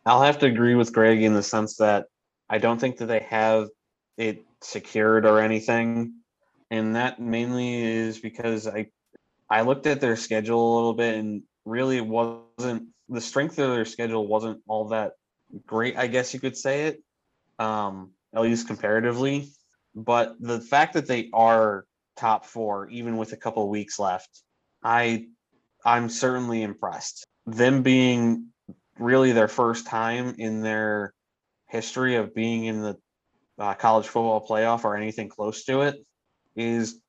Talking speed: 160 wpm